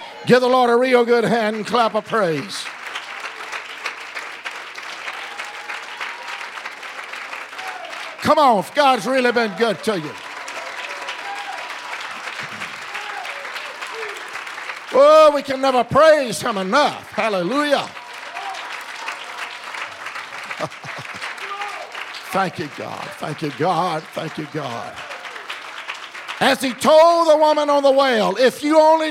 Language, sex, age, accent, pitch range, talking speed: English, male, 50-69, American, 165-245 Hz, 100 wpm